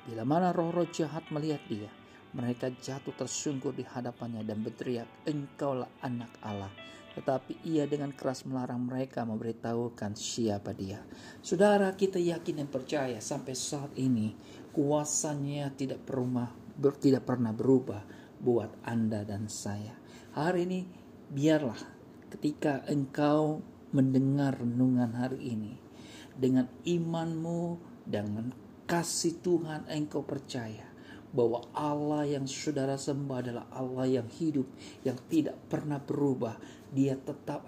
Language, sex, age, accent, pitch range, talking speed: Indonesian, male, 50-69, native, 125-160 Hz, 120 wpm